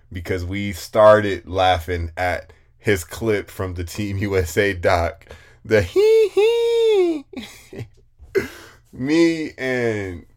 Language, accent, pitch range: English, American, 85-100 Hz